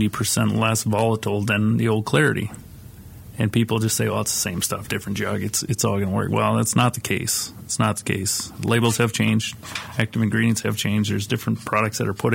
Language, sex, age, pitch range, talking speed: English, male, 30-49, 105-115 Hz, 220 wpm